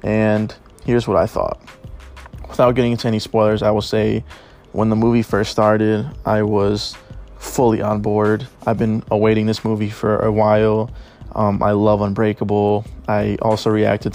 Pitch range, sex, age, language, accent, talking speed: 105-115 Hz, male, 20-39, English, American, 160 wpm